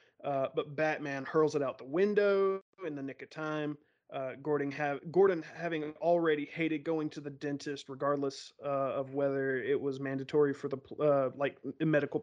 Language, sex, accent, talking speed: English, male, American, 180 wpm